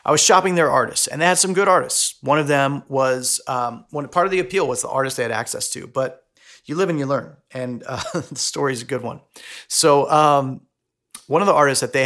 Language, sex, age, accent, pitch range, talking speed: English, male, 30-49, American, 125-155 Hz, 250 wpm